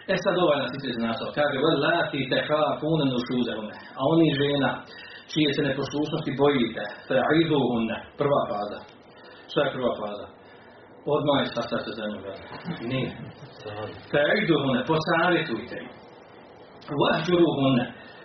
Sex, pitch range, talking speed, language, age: male, 120-155 Hz, 55 wpm, Croatian, 40-59